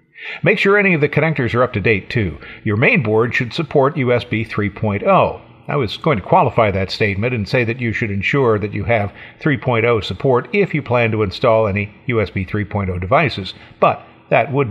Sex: male